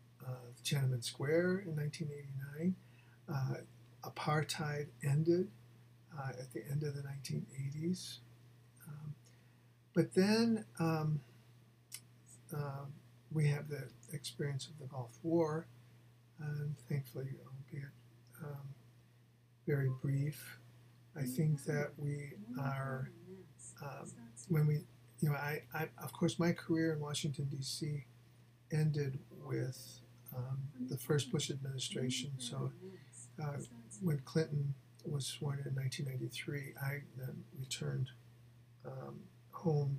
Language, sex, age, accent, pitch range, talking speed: English, male, 50-69, American, 120-150 Hz, 115 wpm